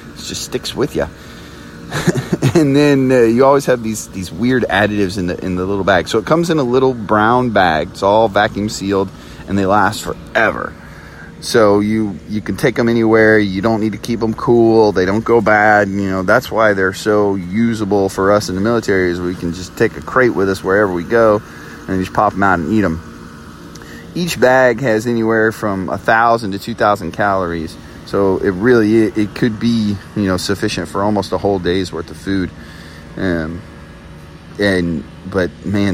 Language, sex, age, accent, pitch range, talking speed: English, male, 30-49, American, 85-110 Hz, 195 wpm